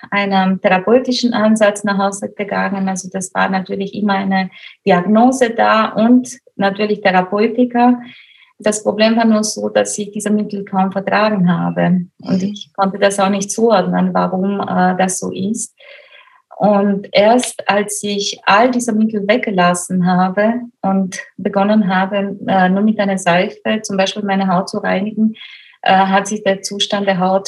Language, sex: German, female